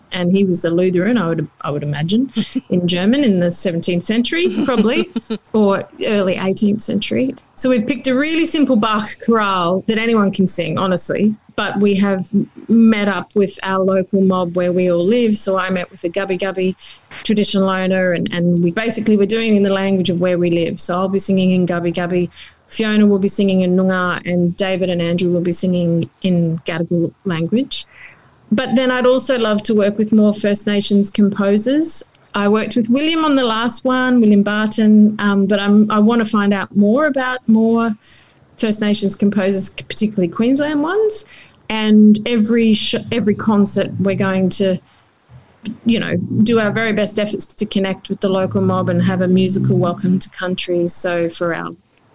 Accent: Australian